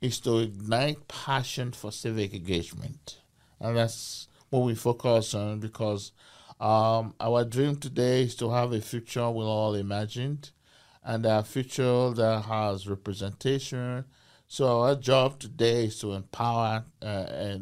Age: 50-69